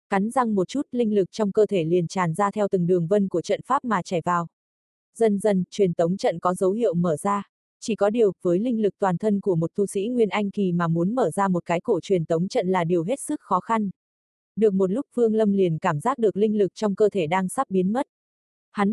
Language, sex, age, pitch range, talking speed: Vietnamese, female, 20-39, 180-220 Hz, 260 wpm